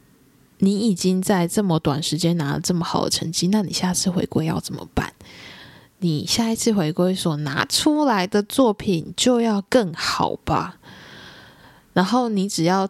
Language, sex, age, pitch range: Chinese, female, 10-29, 170-220 Hz